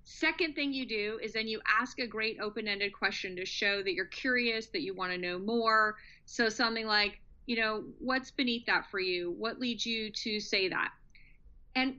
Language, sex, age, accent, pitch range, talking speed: English, female, 30-49, American, 215-270 Hz, 200 wpm